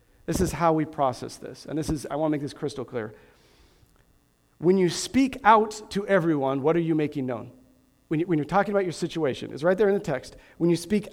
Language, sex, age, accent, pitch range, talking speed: English, male, 40-59, American, 145-185 Hz, 230 wpm